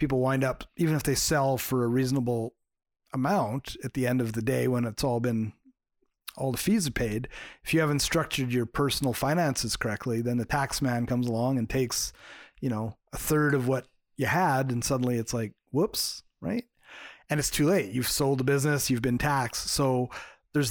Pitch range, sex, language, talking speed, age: 125-145 Hz, male, English, 200 wpm, 30-49